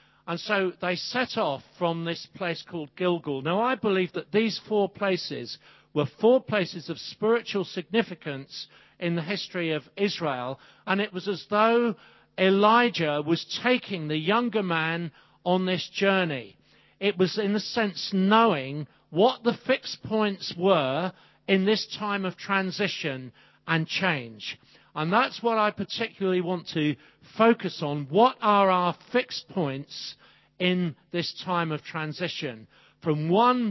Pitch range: 165-210 Hz